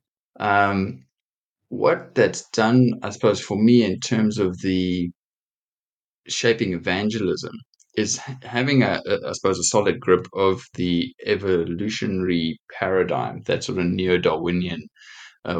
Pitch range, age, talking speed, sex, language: 85-100 Hz, 20-39, 125 wpm, male, English